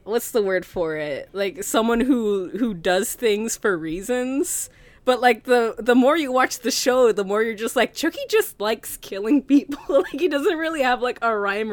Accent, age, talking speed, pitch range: American, 20-39, 205 wpm, 185-255 Hz